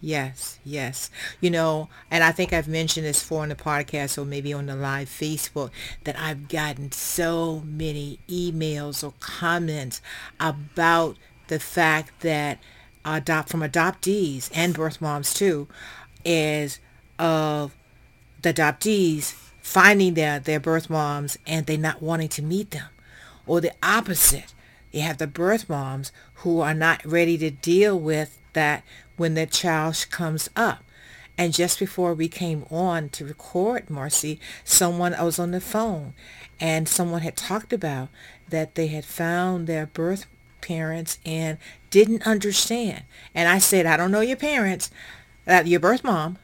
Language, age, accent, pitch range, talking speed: English, 50-69, American, 150-180 Hz, 155 wpm